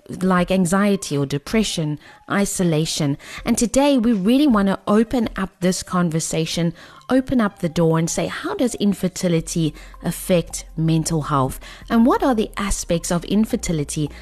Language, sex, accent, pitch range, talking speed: English, female, South African, 165-225 Hz, 145 wpm